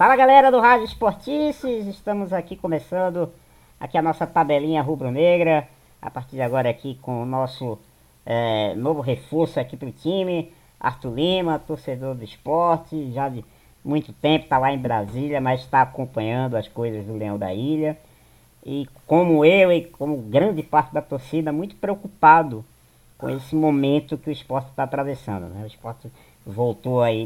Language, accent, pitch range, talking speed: Portuguese, Brazilian, 120-165 Hz, 160 wpm